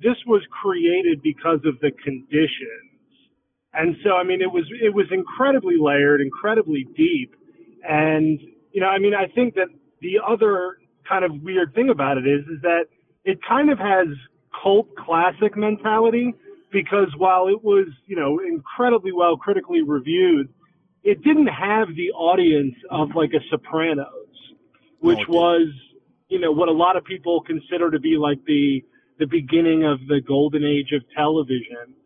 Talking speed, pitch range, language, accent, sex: 160 wpm, 145-215 Hz, English, American, male